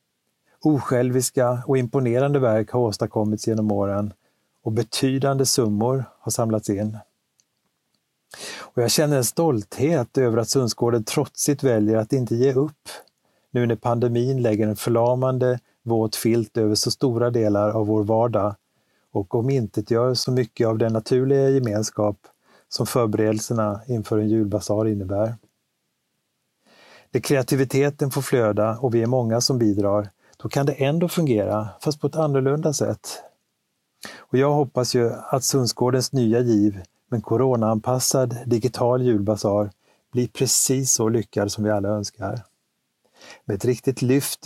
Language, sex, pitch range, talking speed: Swedish, male, 110-130 Hz, 140 wpm